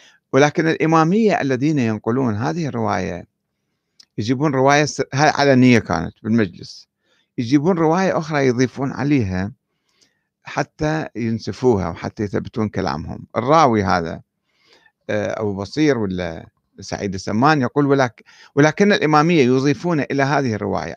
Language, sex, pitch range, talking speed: Arabic, male, 115-170 Hz, 105 wpm